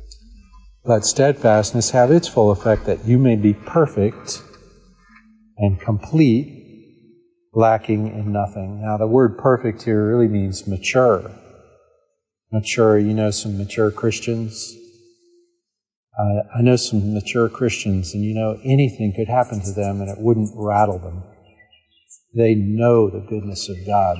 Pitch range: 105-120 Hz